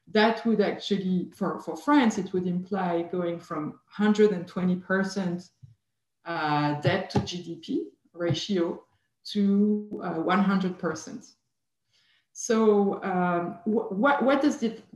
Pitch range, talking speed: 170-215 Hz, 100 wpm